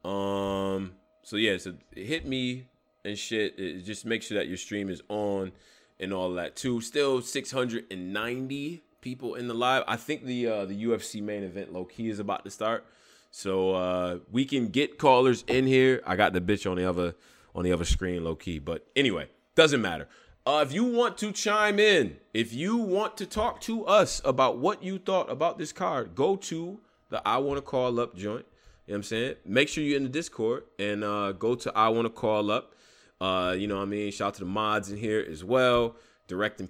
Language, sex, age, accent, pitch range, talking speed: English, male, 20-39, American, 95-130 Hz, 215 wpm